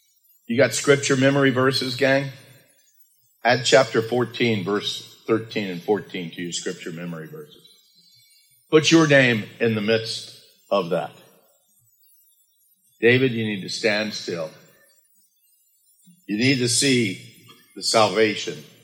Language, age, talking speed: English, 50-69, 120 wpm